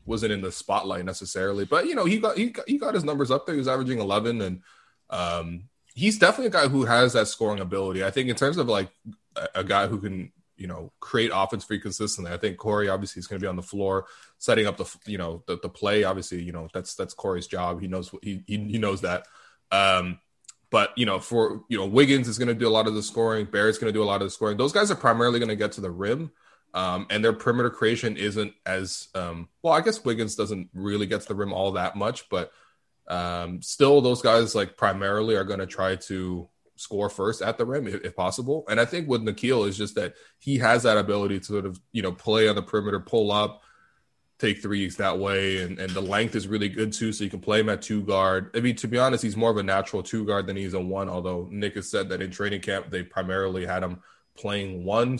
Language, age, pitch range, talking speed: English, 20-39, 95-115 Hz, 255 wpm